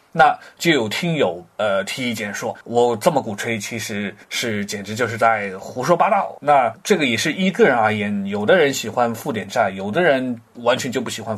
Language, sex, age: Chinese, male, 30-49